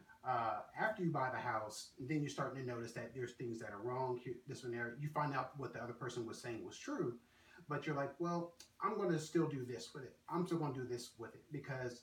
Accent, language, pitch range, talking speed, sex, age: American, English, 125-160 Hz, 265 wpm, male, 30-49